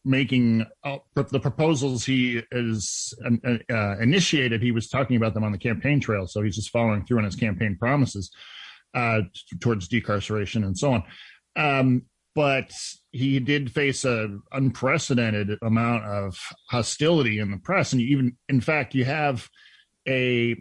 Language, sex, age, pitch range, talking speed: English, male, 40-59, 110-135 Hz, 150 wpm